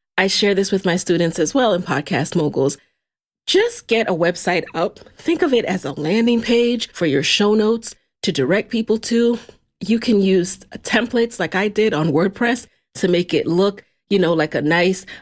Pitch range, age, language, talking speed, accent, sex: 170-215 Hz, 30-49, English, 195 wpm, American, female